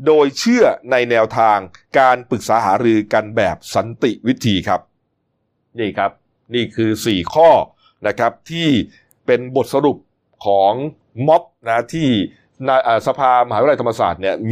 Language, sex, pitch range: Thai, male, 110-155 Hz